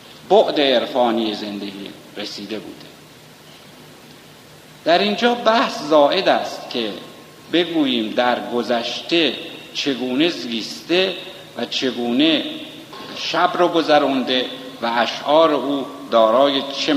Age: 50-69